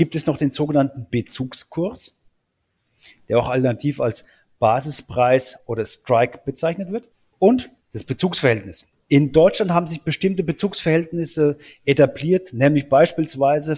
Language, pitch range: German, 130-165 Hz